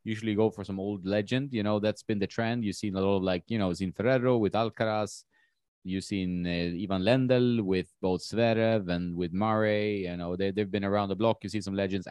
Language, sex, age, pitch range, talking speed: English, male, 30-49, 95-115 Hz, 230 wpm